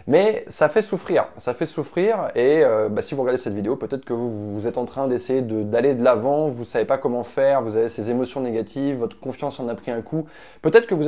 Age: 20-39